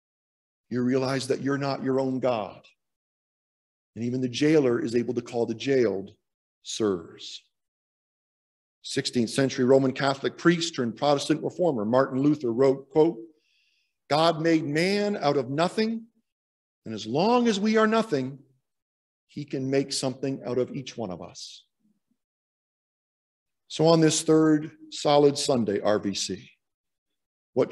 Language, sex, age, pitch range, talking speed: English, male, 50-69, 125-155 Hz, 135 wpm